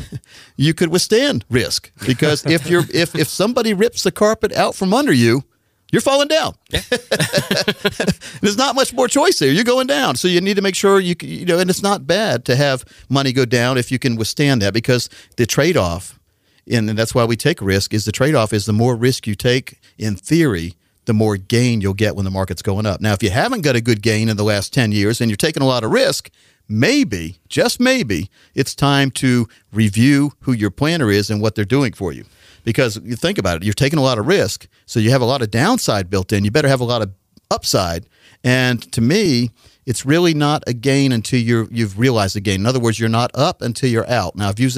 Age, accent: 50-69, American